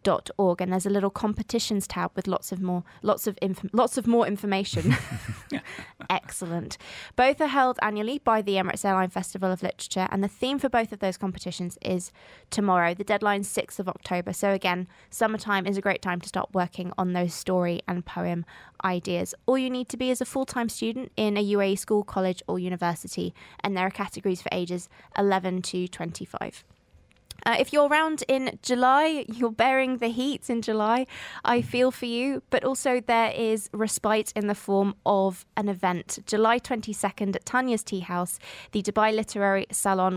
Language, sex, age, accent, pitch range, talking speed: English, female, 20-39, British, 185-230 Hz, 185 wpm